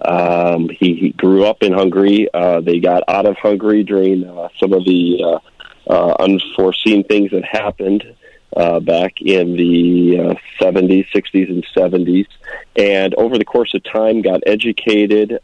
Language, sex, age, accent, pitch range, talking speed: English, male, 40-59, American, 90-105 Hz, 155 wpm